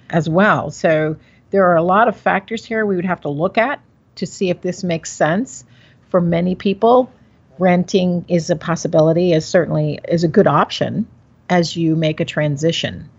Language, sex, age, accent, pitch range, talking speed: English, female, 50-69, American, 155-190 Hz, 180 wpm